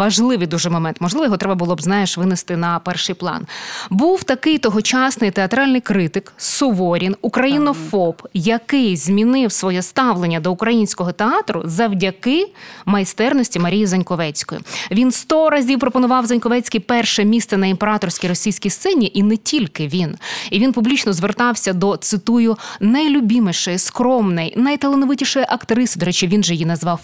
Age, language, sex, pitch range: 20-39, Ukrainian, female, 185-245 Hz